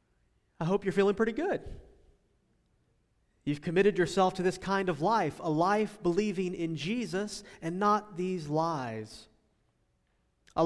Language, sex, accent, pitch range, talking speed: English, male, American, 155-200 Hz, 135 wpm